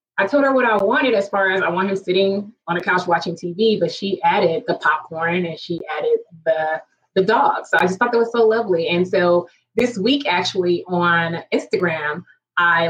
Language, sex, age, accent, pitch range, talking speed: English, female, 20-39, American, 165-215 Hz, 210 wpm